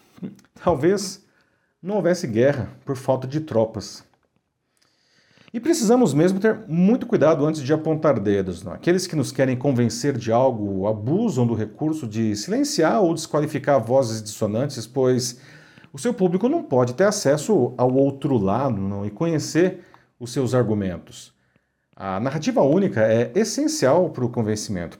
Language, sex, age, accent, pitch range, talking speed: Portuguese, male, 40-59, Brazilian, 110-160 Hz, 140 wpm